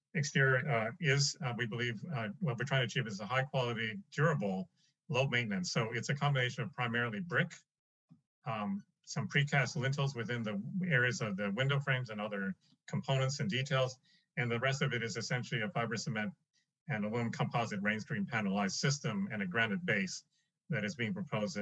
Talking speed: 185 wpm